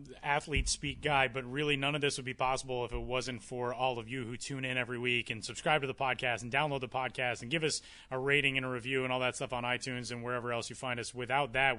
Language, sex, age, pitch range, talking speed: English, male, 30-49, 130-160 Hz, 275 wpm